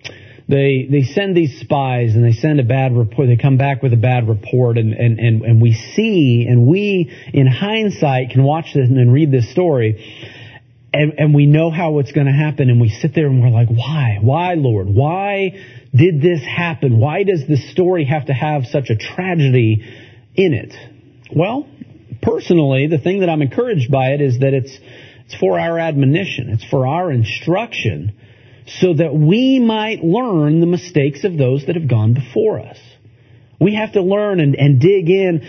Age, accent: 40-59, American